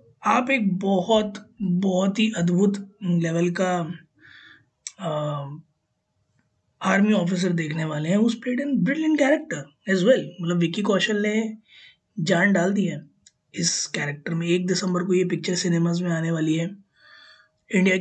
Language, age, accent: Hindi, 20-39, native